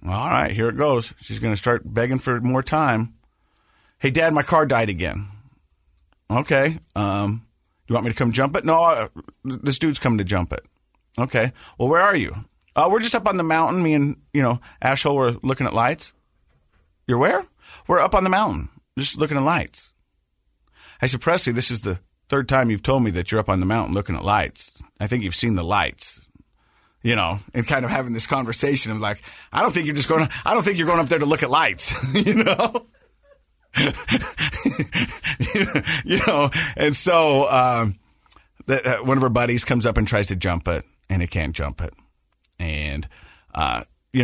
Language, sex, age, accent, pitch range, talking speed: English, male, 40-59, American, 95-135 Hz, 205 wpm